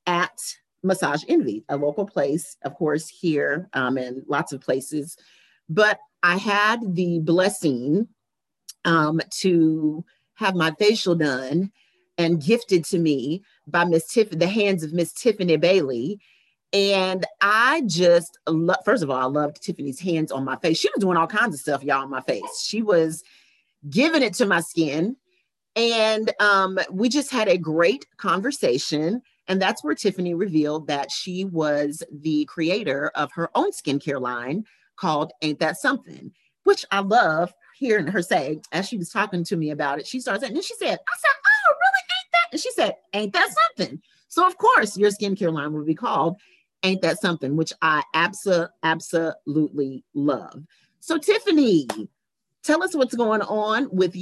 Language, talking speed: English, 170 wpm